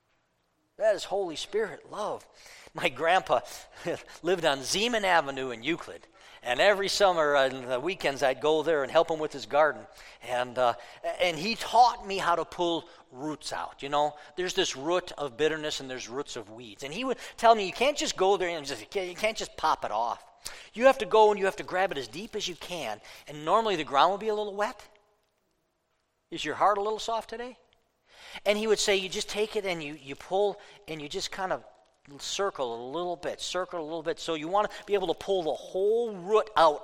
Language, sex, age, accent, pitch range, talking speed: English, male, 50-69, American, 140-210 Hz, 225 wpm